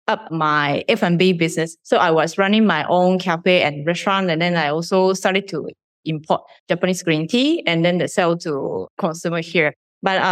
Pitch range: 165-195 Hz